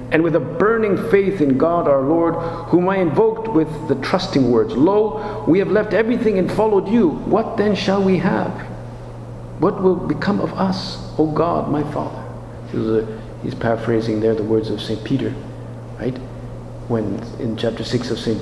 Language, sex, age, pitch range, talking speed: English, male, 50-69, 115-155 Hz, 175 wpm